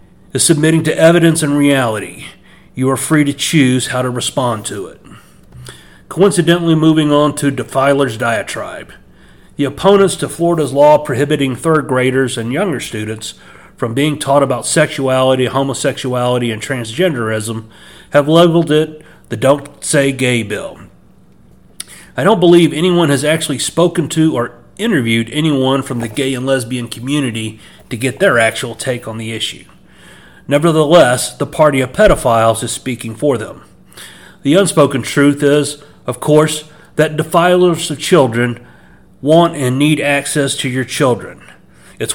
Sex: male